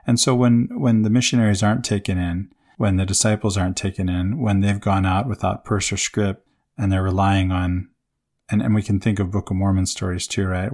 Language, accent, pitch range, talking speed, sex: English, American, 95-110 Hz, 220 wpm, male